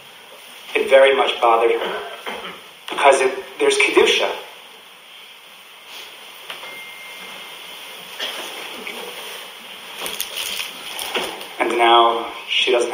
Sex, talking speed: male, 55 wpm